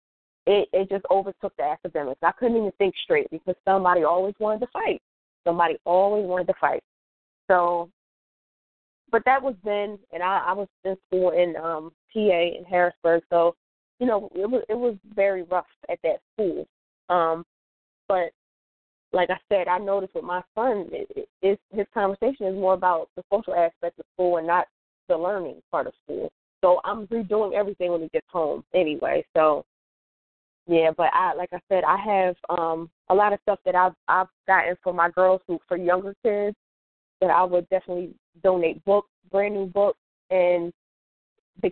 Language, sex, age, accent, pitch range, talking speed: English, female, 20-39, American, 170-205 Hz, 175 wpm